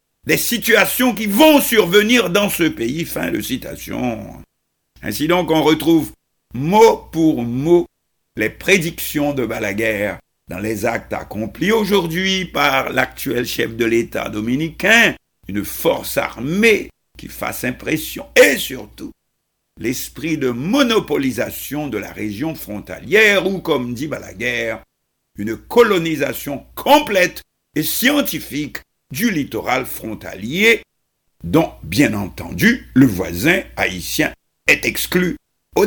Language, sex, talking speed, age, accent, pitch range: French, male, 115 wpm, 60-79, French, 110-185 Hz